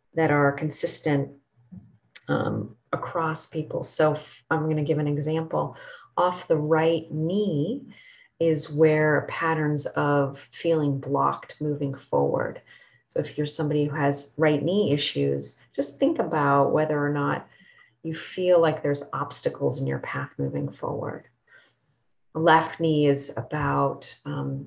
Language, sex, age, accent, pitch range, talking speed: English, female, 30-49, American, 140-160 Hz, 130 wpm